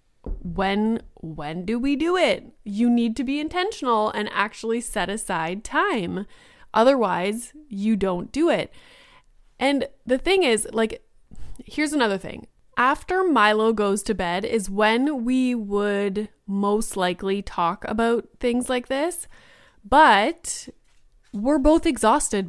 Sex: female